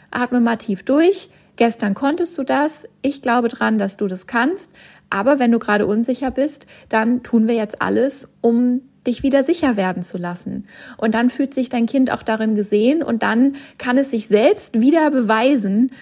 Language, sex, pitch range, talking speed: German, female, 205-255 Hz, 185 wpm